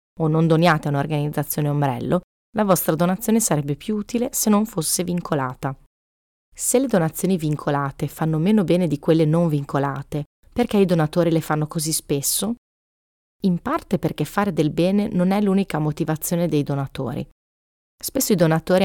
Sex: female